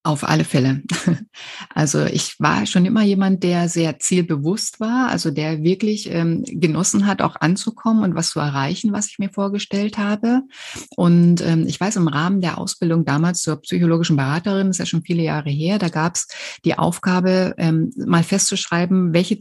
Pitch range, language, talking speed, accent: 160-195 Hz, German, 180 wpm, German